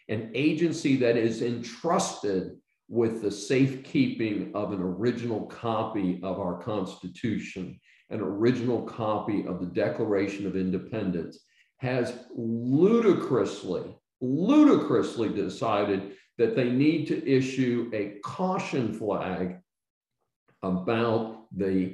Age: 50-69